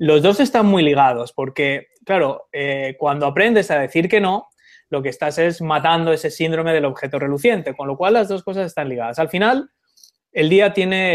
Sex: male